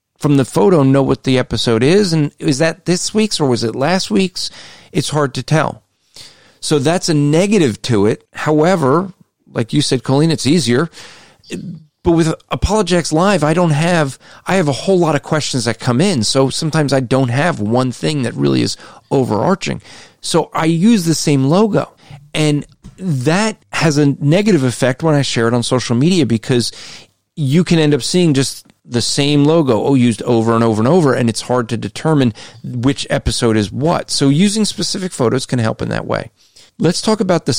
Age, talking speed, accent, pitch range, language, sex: 40-59, 195 wpm, American, 120-165 Hz, English, male